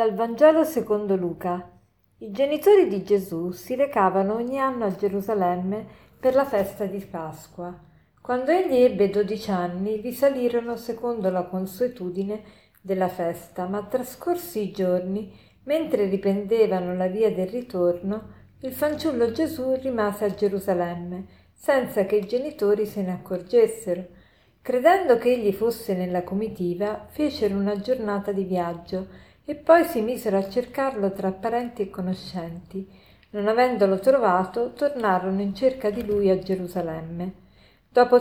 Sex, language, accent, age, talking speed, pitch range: female, Italian, native, 50-69, 135 wpm, 185-245 Hz